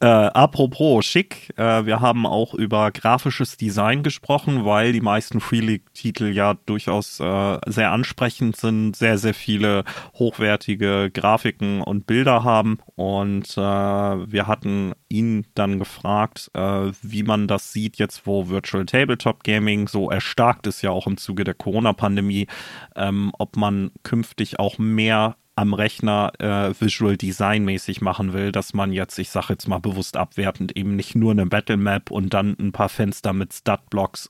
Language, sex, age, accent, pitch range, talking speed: German, male, 30-49, German, 100-115 Hz, 165 wpm